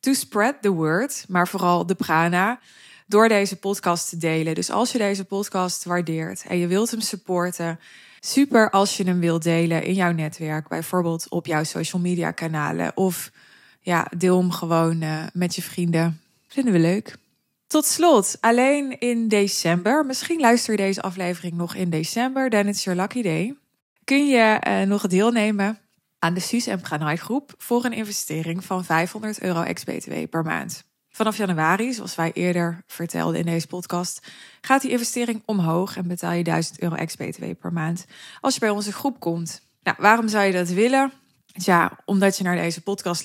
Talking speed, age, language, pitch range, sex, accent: 180 wpm, 20-39, Dutch, 170-215 Hz, female, Dutch